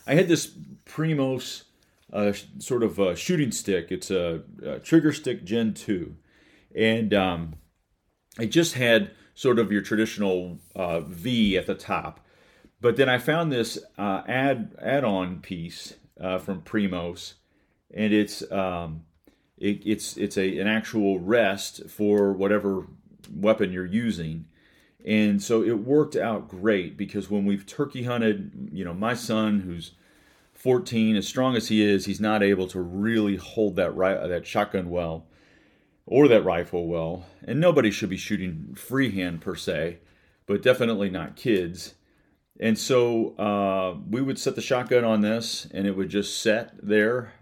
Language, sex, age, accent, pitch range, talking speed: English, male, 40-59, American, 95-115 Hz, 155 wpm